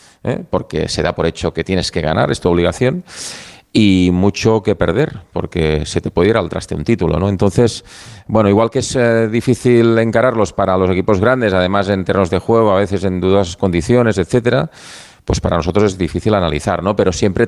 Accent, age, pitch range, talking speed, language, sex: Spanish, 30-49, 90-115 Hz, 200 wpm, Spanish, male